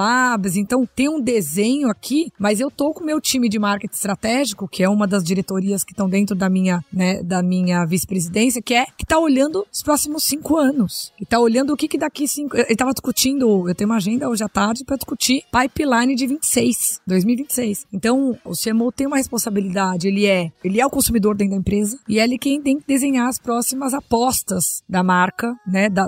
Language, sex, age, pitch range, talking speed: Portuguese, female, 20-39, 195-240 Hz, 215 wpm